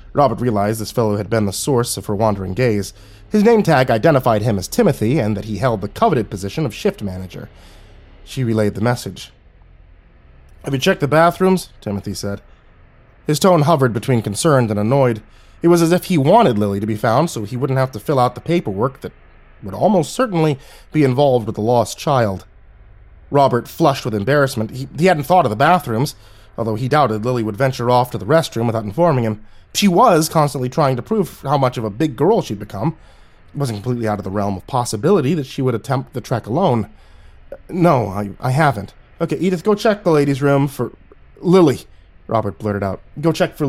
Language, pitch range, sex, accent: English, 105-145 Hz, male, American